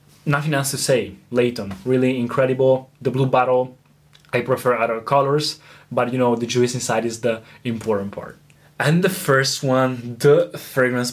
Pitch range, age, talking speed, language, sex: 125-150 Hz, 20-39, 160 wpm, Italian, male